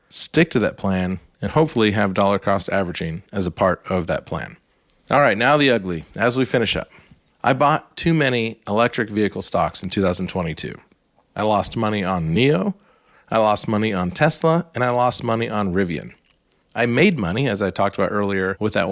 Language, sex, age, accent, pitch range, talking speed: English, male, 30-49, American, 100-135 Hz, 185 wpm